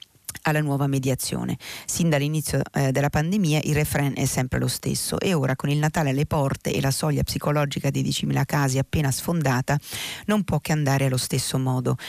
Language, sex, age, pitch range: Italian, female, 40-59, 135-155 Hz